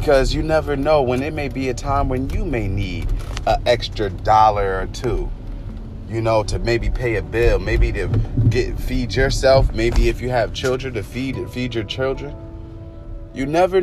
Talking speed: 185 wpm